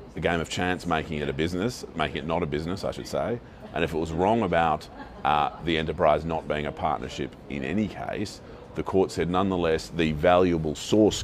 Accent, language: Australian, English